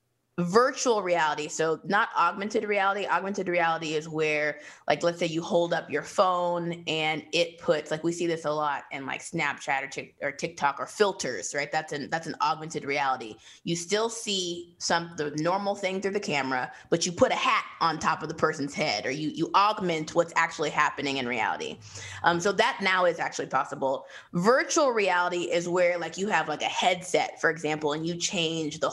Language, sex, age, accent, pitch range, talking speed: English, female, 20-39, American, 155-200 Hz, 200 wpm